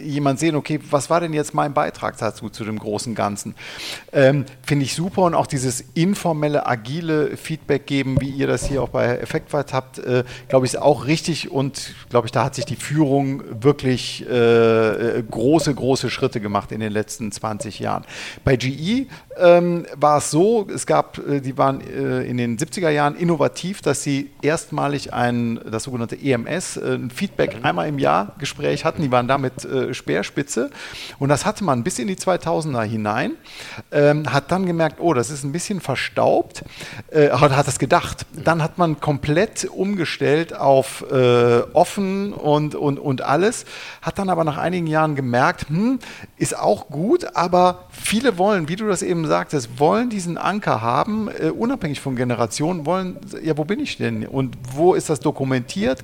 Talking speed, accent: 180 wpm, German